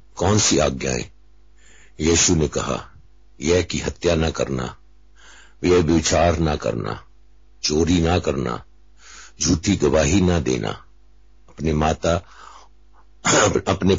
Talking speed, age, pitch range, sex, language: 105 wpm, 60-79, 70-85 Hz, male, Hindi